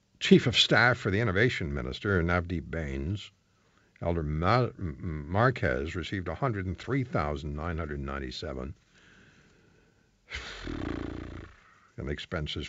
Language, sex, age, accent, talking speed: English, male, 60-79, American, 80 wpm